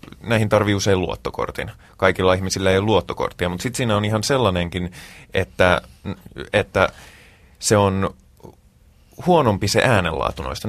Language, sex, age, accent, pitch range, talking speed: Finnish, male, 20-39, native, 90-105 Hz, 125 wpm